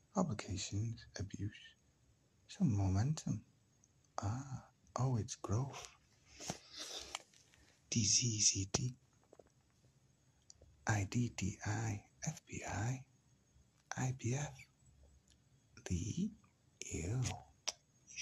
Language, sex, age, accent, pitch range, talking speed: English, male, 60-79, American, 100-125 Hz, 50 wpm